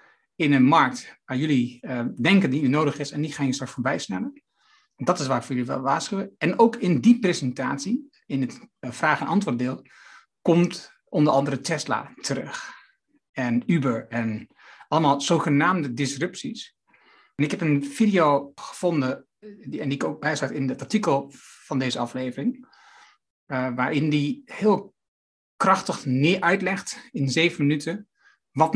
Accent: Dutch